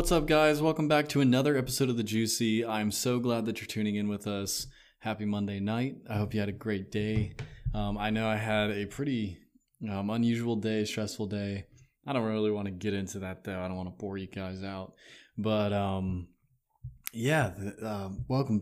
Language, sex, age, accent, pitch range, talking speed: English, male, 20-39, American, 105-125 Hz, 210 wpm